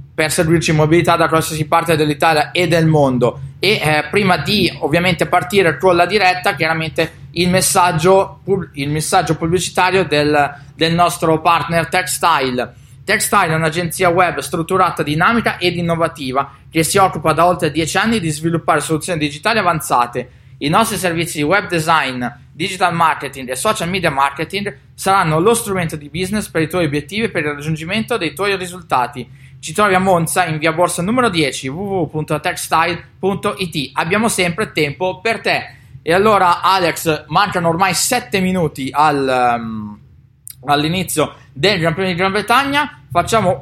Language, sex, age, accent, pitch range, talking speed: Italian, male, 20-39, native, 145-185 Hz, 150 wpm